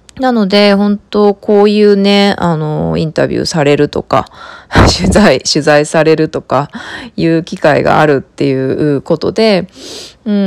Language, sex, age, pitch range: Japanese, female, 20-39, 150-210 Hz